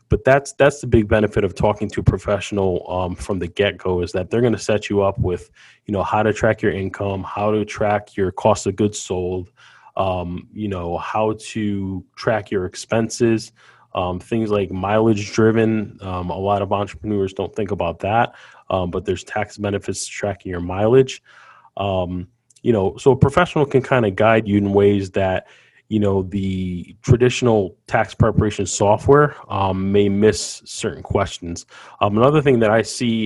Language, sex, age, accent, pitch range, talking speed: English, male, 20-39, American, 95-110 Hz, 185 wpm